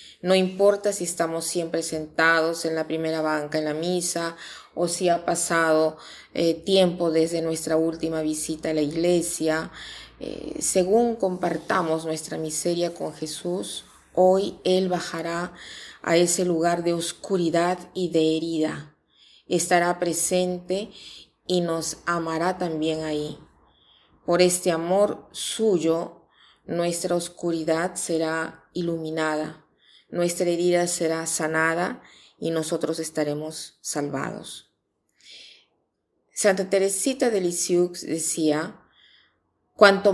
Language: Spanish